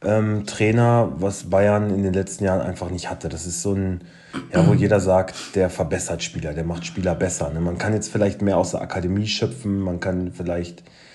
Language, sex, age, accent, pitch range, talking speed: German, male, 30-49, German, 90-110 Hz, 210 wpm